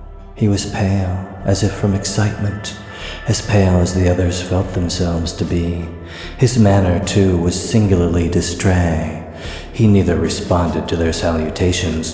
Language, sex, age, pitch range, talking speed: English, male, 40-59, 85-105 Hz, 140 wpm